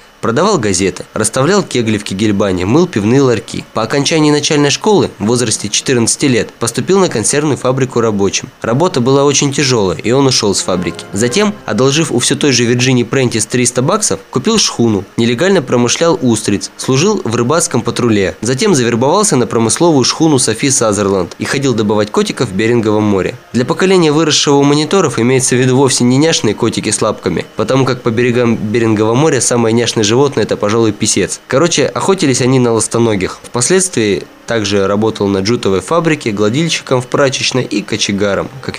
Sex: male